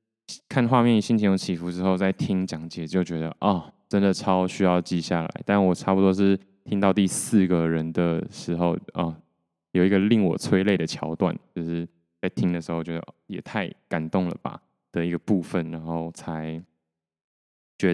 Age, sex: 20-39, male